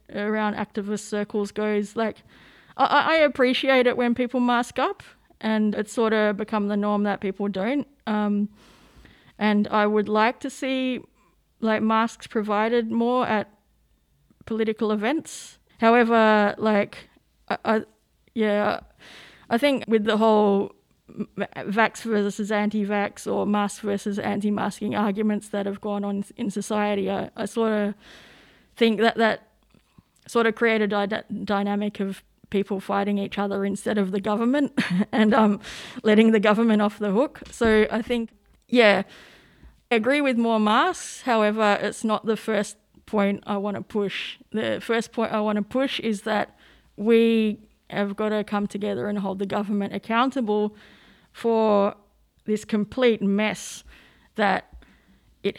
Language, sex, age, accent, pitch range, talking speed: English, female, 20-39, Australian, 205-225 Hz, 145 wpm